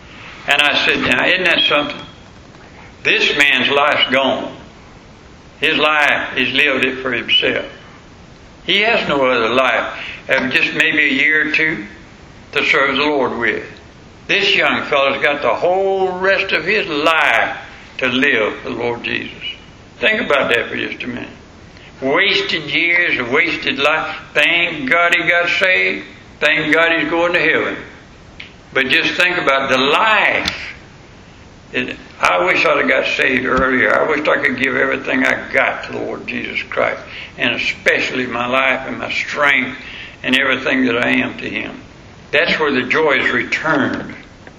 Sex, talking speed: male, 160 wpm